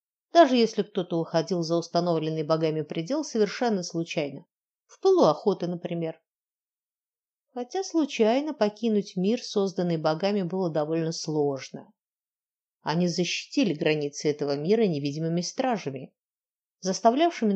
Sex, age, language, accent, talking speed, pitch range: female, 50-69, Russian, native, 105 wpm, 160-240 Hz